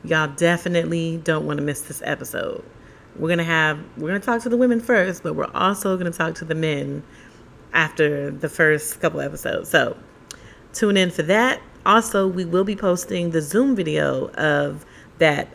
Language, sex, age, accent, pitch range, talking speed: English, female, 40-59, American, 155-190 Hz, 195 wpm